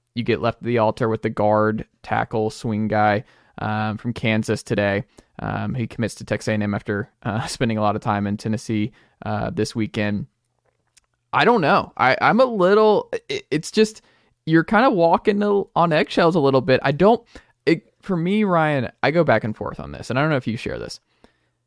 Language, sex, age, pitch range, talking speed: English, male, 20-39, 110-135 Hz, 210 wpm